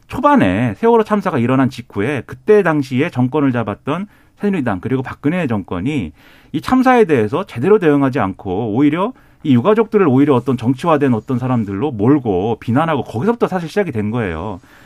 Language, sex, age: Korean, male, 40-59